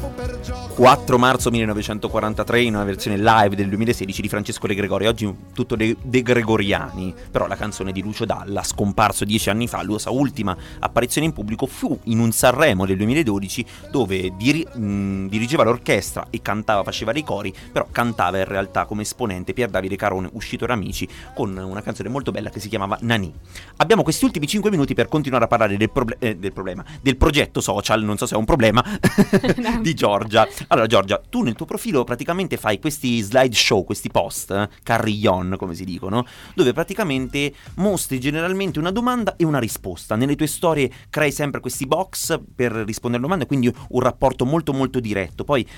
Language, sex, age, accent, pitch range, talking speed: Italian, male, 30-49, native, 100-130 Hz, 180 wpm